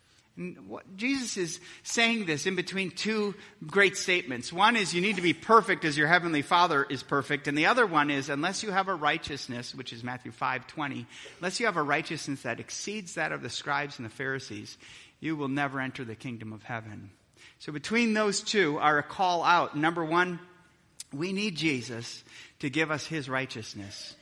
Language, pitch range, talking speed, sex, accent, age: English, 130-180 Hz, 190 wpm, male, American, 30-49